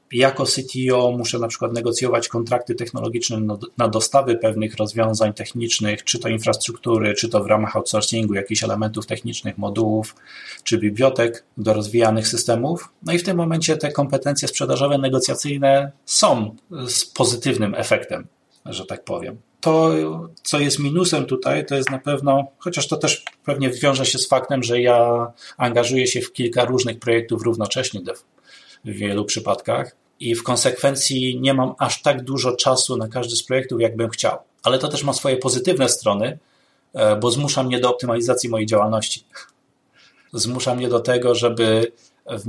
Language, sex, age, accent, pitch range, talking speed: Polish, male, 30-49, native, 115-130 Hz, 155 wpm